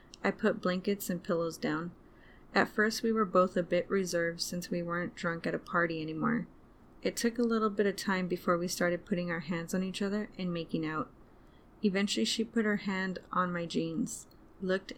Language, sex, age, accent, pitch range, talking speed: English, female, 20-39, American, 175-200 Hz, 200 wpm